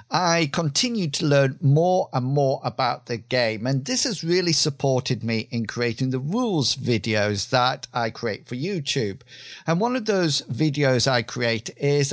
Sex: male